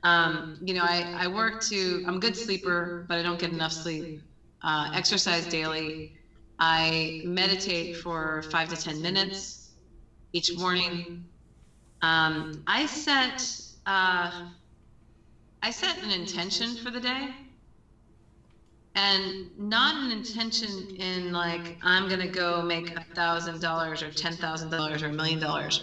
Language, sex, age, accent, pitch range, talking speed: English, female, 30-49, American, 170-195 Hz, 140 wpm